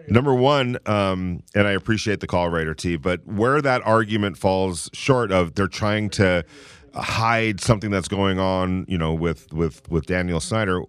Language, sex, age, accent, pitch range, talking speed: English, male, 40-59, American, 95-130 Hz, 175 wpm